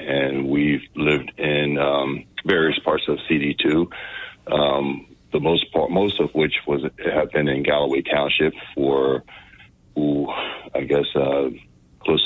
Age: 40-59